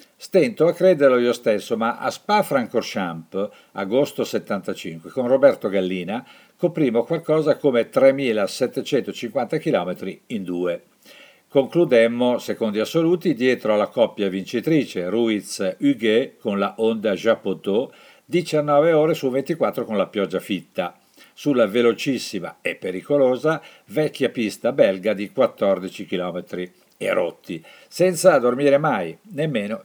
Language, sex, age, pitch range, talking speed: Italian, male, 50-69, 100-155 Hz, 115 wpm